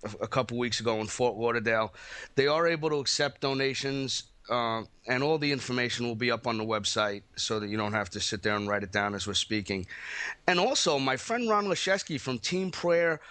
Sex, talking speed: male, 215 wpm